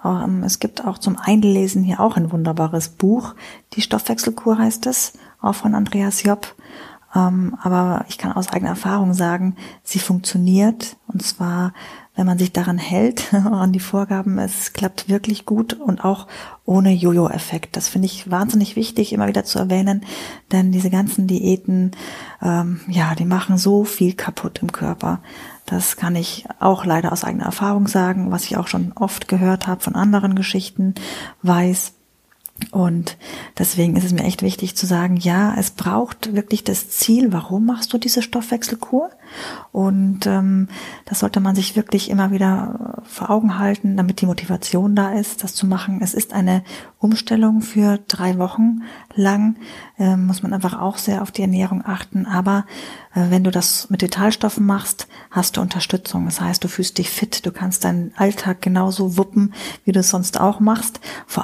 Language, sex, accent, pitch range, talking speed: German, female, German, 185-210 Hz, 170 wpm